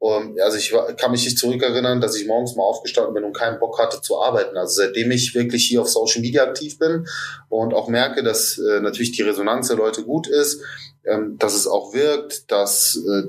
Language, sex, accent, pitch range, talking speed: German, male, German, 105-125 Hz, 215 wpm